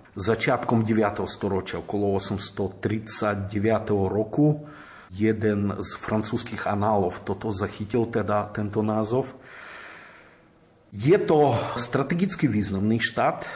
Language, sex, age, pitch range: Slovak, male, 50-69, 105-120 Hz